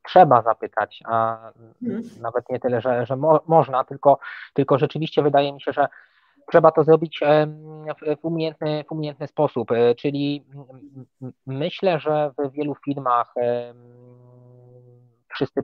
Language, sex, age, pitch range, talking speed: Polish, male, 20-39, 125-145 Hz, 125 wpm